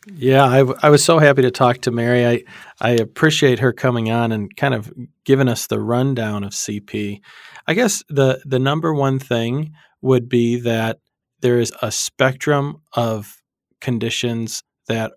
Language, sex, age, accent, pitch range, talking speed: English, male, 40-59, American, 110-135 Hz, 170 wpm